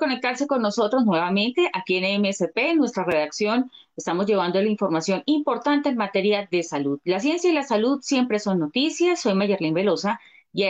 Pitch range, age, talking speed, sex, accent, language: 165-220 Hz, 30-49, 180 wpm, female, Colombian, Spanish